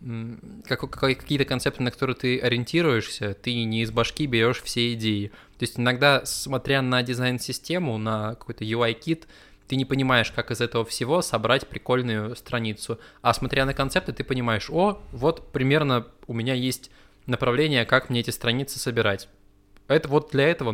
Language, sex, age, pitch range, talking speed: Russian, male, 20-39, 115-135 Hz, 155 wpm